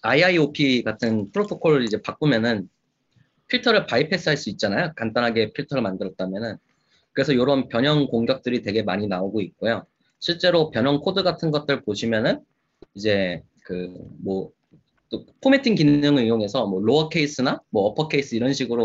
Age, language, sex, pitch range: 20-39, Korean, male, 115-155 Hz